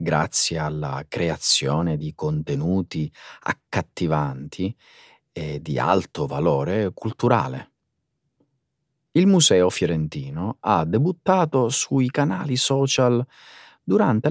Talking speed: 85 wpm